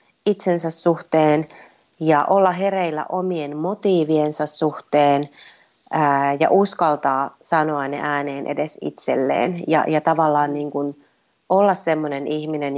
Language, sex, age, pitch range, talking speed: Finnish, female, 30-49, 150-180 Hz, 115 wpm